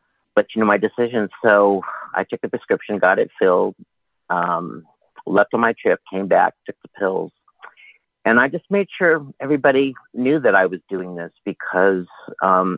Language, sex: English, male